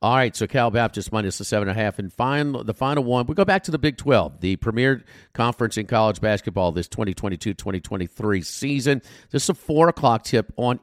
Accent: American